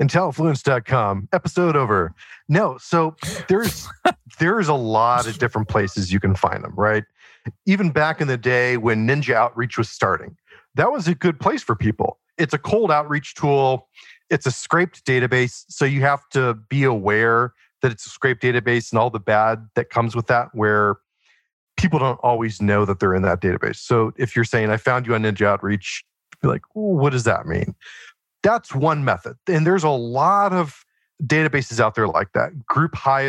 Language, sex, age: English, male, 40-59